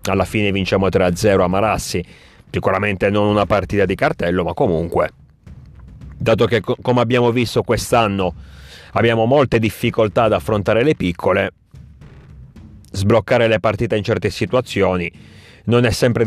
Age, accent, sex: 30-49, native, male